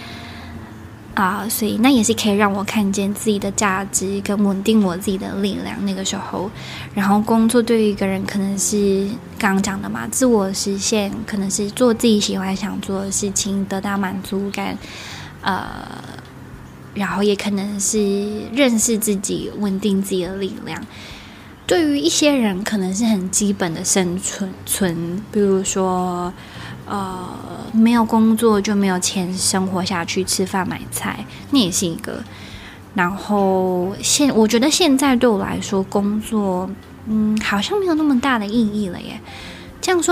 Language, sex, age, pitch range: Chinese, female, 10-29, 190-220 Hz